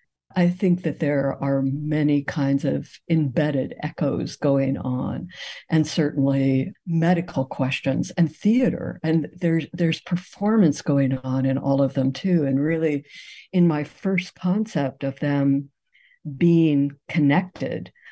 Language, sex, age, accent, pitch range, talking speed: English, female, 60-79, American, 140-170 Hz, 130 wpm